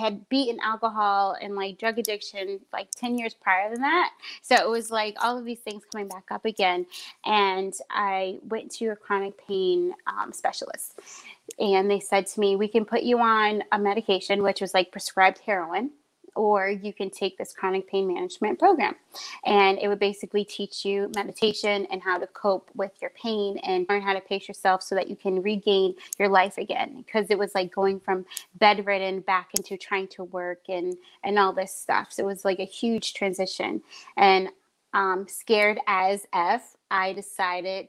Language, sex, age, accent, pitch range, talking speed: English, female, 20-39, American, 190-215 Hz, 190 wpm